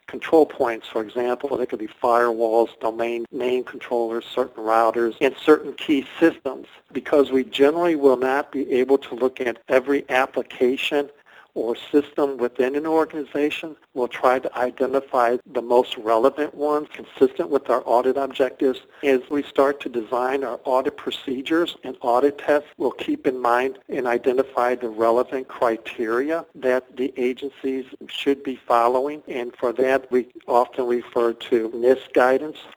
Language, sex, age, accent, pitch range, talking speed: English, male, 50-69, American, 125-145 Hz, 150 wpm